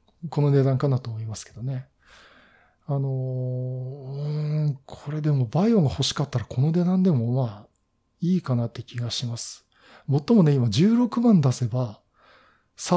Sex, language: male, Japanese